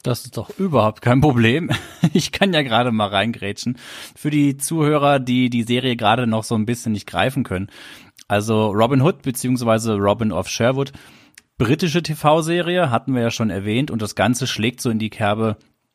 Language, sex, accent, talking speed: German, male, German, 180 wpm